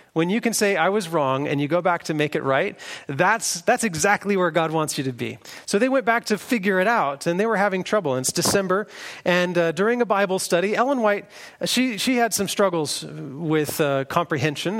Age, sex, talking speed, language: 30-49, male, 225 wpm, English